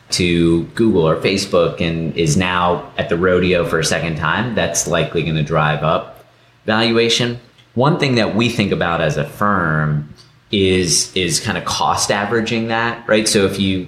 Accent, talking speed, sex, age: American, 175 wpm, male, 30-49